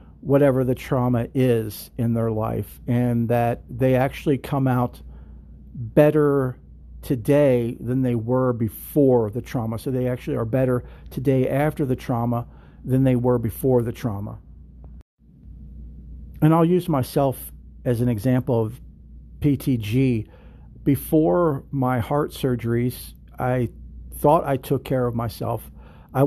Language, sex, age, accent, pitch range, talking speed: English, male, 50-69, American, 110-135 Hz, 130 wpm